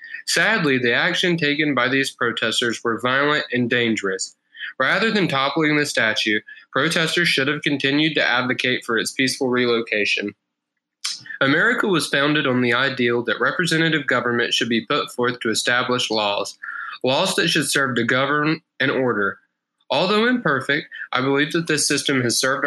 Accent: American